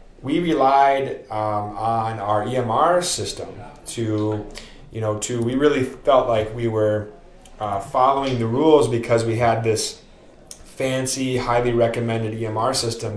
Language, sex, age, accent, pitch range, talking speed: English, male, 20-39, American, 105-125 Hz, 135 wpm